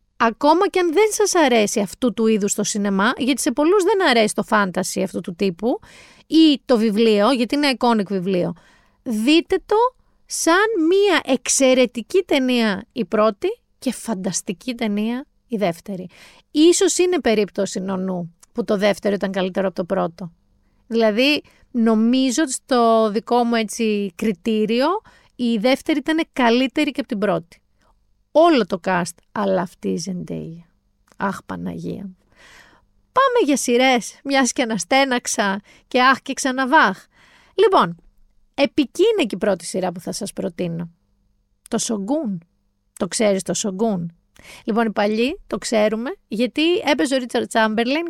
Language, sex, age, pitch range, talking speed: Greek, female, 30-49, 195-275 Hz, 140 wpm